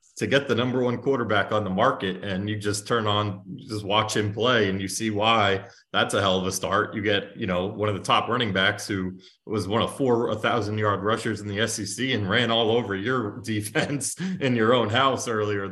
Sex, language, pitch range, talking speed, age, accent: male, English, 95-110 Hz, 230 wpm, 20-39, American